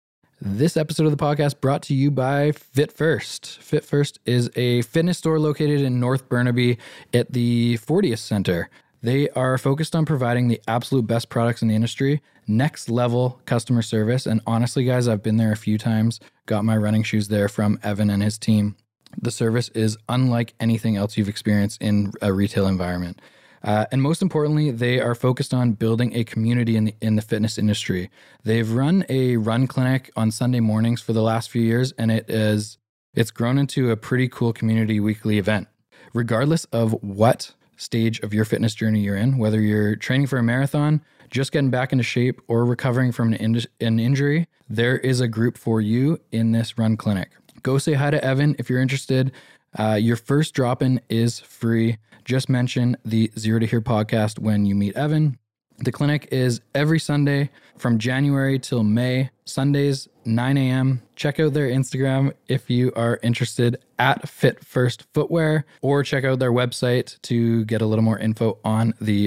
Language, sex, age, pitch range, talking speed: English, male, 20-39, 110-135 Hz, 185 wpm